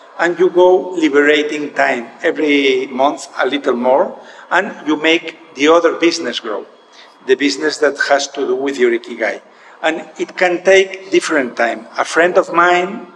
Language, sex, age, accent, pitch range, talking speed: English, male, 50-69, Spanish, 145-185 Hz, 165 wpm